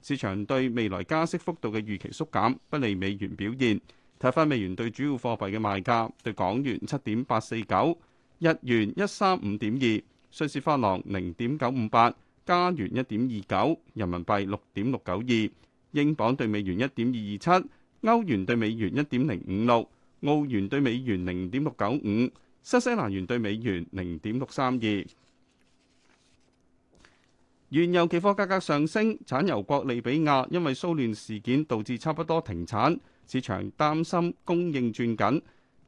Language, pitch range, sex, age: Chinese, 105-155 Hz, male, 30-49